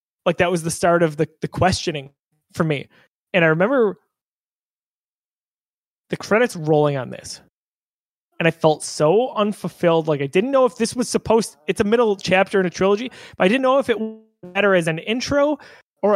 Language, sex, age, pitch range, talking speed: English, male, 20-39, 175-235 Hz, 190 wpm